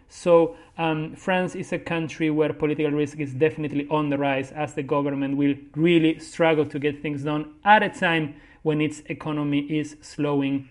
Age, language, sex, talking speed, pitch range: 40-59, English, male, 180 wpm, 155-195 Hz